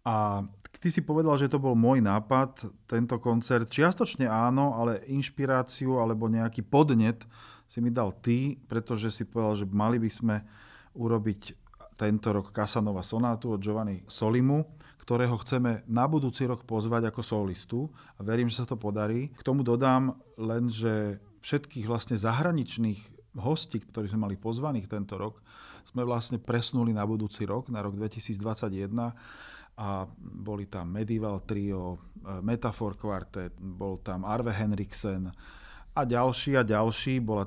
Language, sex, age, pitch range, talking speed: Slovak, male, 40-59, 105-125 Hz, 145 wpm